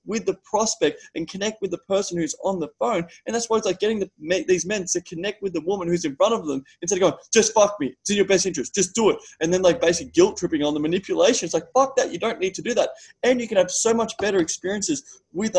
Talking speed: 280 wpm